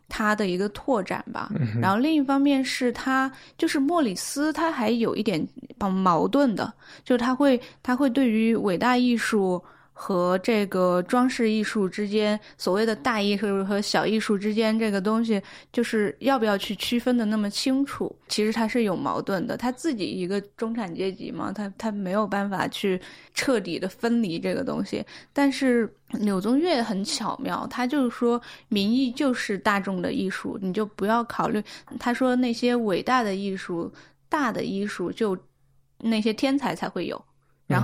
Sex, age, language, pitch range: female, 20-39, Chinese, 185-240 Hz